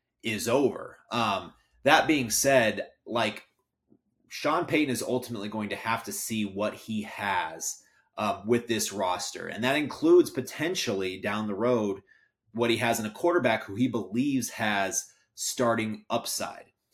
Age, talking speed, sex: 30-49, 150 wpm, male